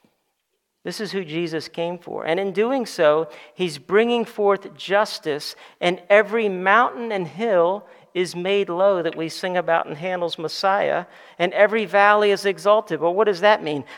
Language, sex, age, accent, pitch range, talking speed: English, male, 50-69, American, 180-230 Hz, 165 wpm